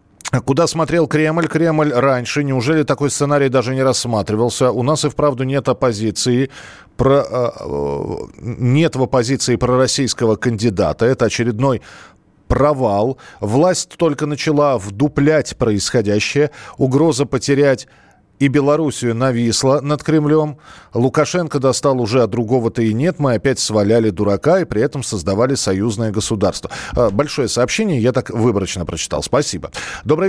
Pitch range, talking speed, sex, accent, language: 115-145 Hz, 125 wpm, male, native, Russian